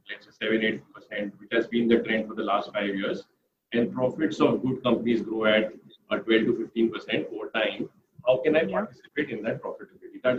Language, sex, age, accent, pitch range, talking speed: English, male, 40-59, Indian, 115-160 Hz, 200 wpm